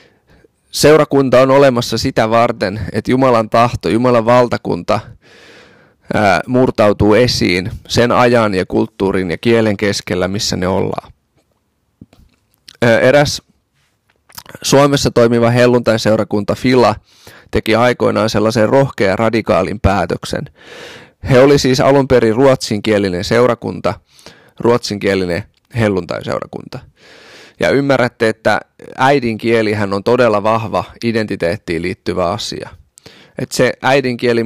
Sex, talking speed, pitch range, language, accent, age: male, 95 wpm, 105-125 Hz, Finnish, native, 20-39